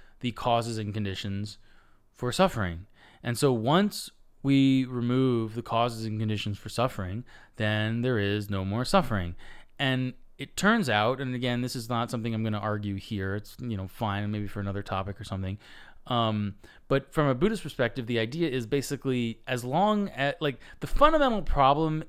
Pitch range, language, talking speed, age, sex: 105-135 Hz, English, 175 wpm, 20-39, male